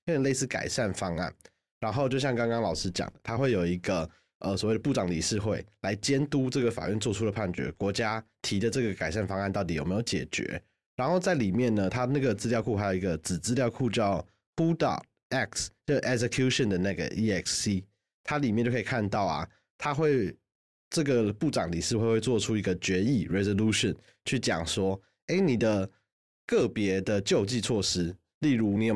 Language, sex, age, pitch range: Chinese, male, 20-39, 95-115 Hz